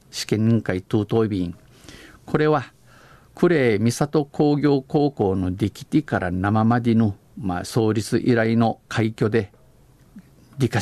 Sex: male